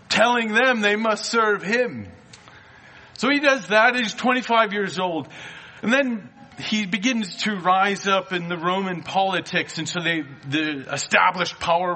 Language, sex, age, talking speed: English, male, 40-59, 155 wpm